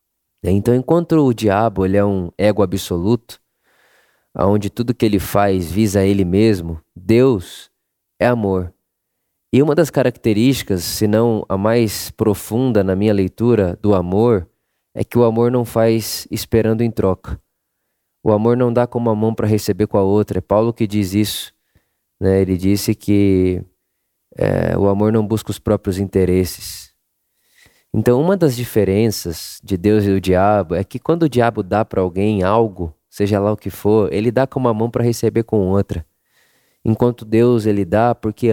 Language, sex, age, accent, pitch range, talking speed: Portuguese, male, 20-39, Brazilian, 100-120 Hz, 170 wpm